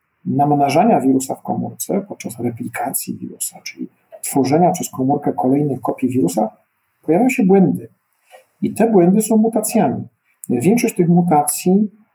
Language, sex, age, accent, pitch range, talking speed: Polish, male, 50-69, native, 130-180 Hz, 125 wpm